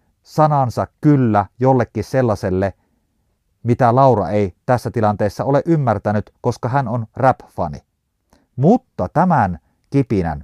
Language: Finnish